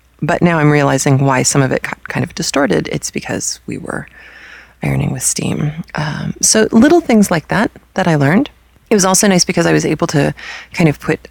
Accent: American